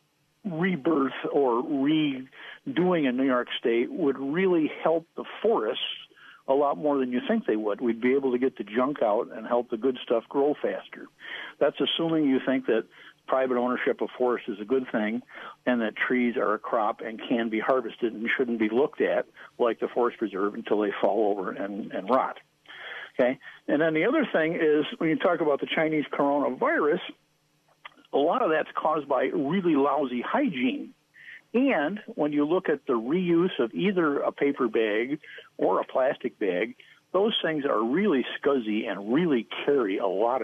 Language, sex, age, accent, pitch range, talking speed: English, male, 60-79, American, 125-180 Hz, 180 wpm